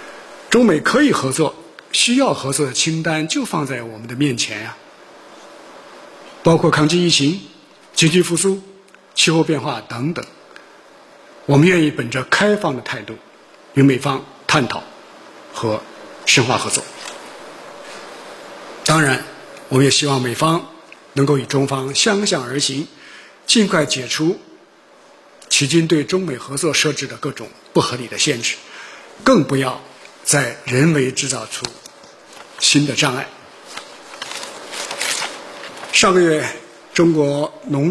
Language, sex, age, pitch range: Chinese, male, 50-69, 135-170 Hz